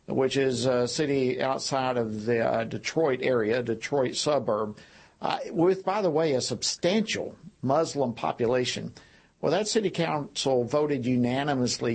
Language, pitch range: English, 120-145 Hz